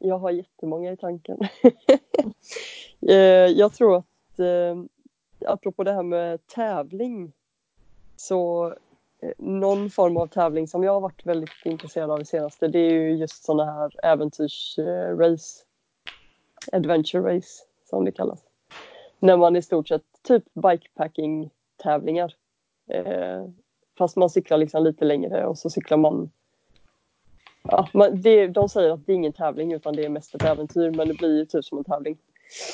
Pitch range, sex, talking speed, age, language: 155-195 Hz, female, 155 wpm, 20-39, Swedish